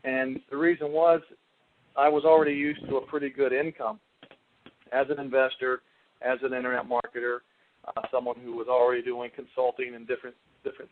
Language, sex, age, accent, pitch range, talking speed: English, male, 40-59, American, 125-150 Hz, 165 wpm